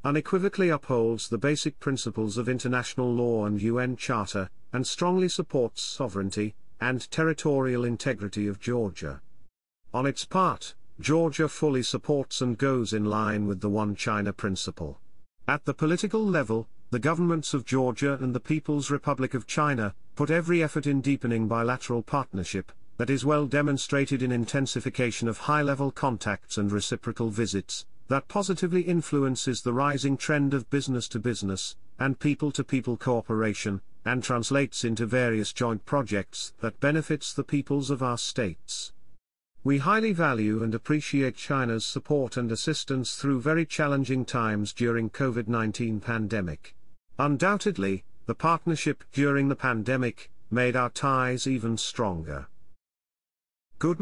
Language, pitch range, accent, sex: English, 110-145 Hz, British, male